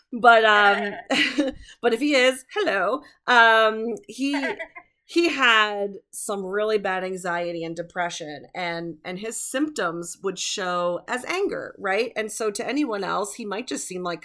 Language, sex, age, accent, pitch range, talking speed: English, female, 30-49, American, 185-255 Hz, 150 wpm